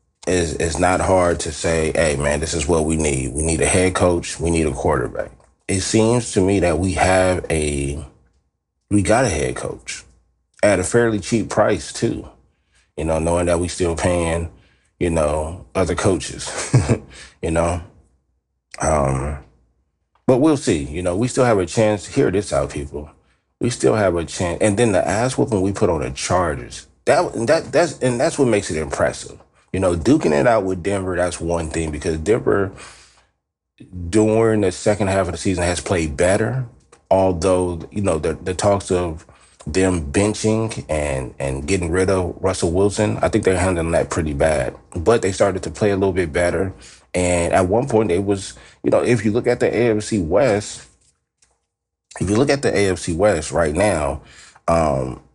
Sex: male